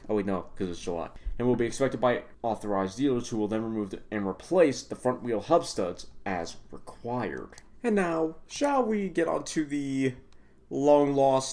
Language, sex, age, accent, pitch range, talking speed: English, male, 30-49, American, 95-135 Hz, 175 wpm